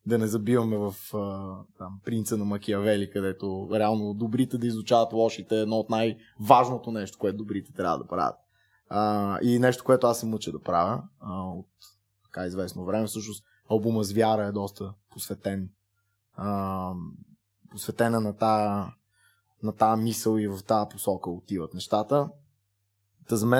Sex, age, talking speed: male, 20-39, 145 wpm